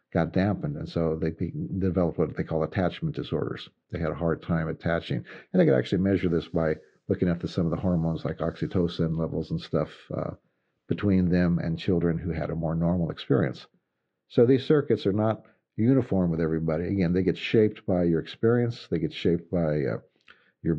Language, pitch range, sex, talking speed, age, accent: English, 85-100 Hz, male, 195 wpm, 50-69, American